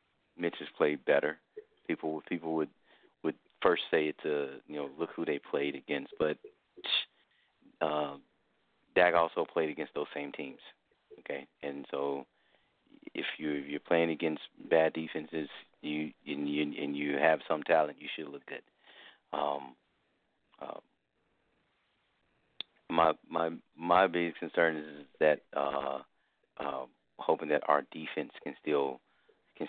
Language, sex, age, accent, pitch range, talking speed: English, male, 40-59, American, 70-80 Hz, 140 wpm